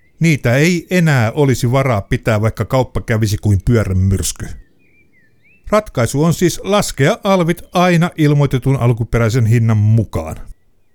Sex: male